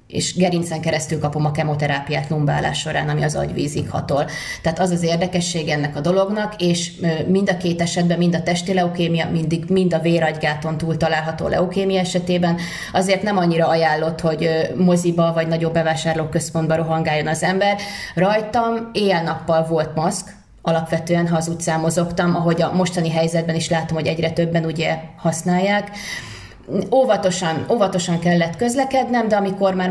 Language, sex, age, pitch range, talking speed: Hungarian, female, 30-49, 160-185 Hz, 150 wpm